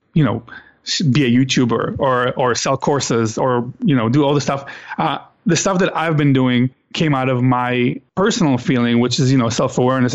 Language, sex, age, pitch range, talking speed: English, male, 30-49, 125-155 Hz, 200 wpm